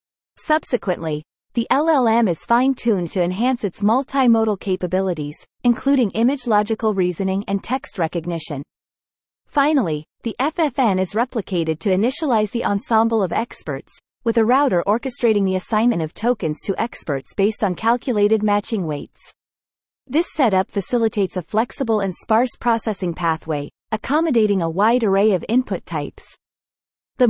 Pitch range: 185-240 Hz